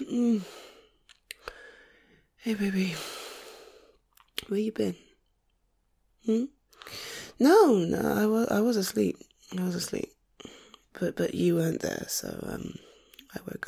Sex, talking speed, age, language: female, 115 wpm, 20-39, English